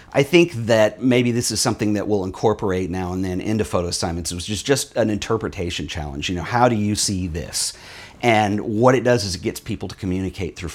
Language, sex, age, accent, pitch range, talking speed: English, male, 40-59, American, 90-115 Hz, 225 wpm